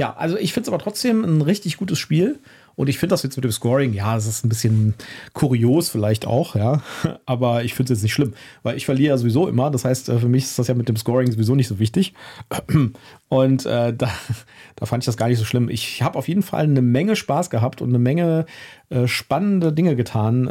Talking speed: 240 wpm